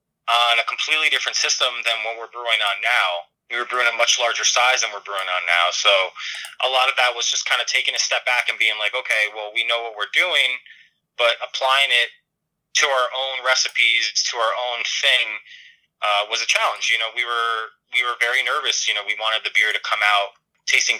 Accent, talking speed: American, 225 wpm